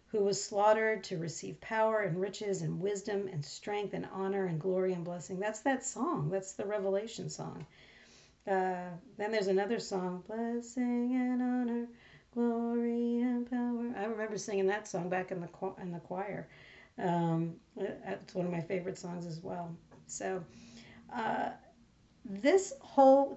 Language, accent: English, American